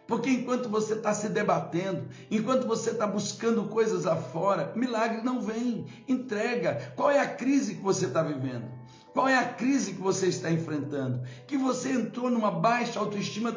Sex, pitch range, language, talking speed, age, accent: male, 200-235 Hz, Portuguese, 175 wpm, 60-79, Brazilian